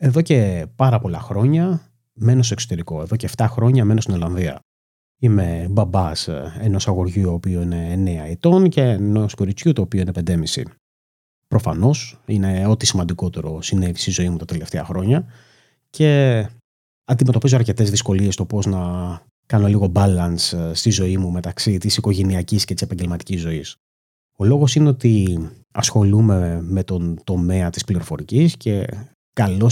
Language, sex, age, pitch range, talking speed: Greek, male, 30-49, 90-120 Hz, 150 wpm